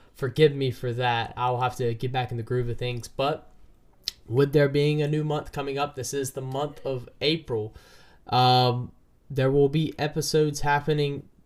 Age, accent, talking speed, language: 10-29, American, 185 wpm, English